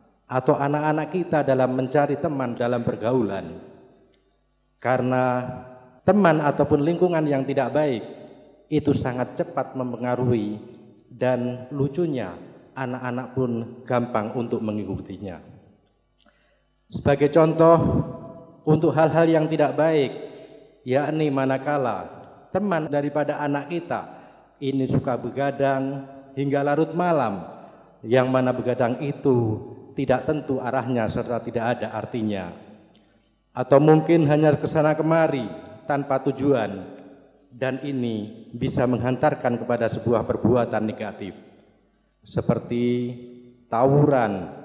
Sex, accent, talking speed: male, native, 100 wpm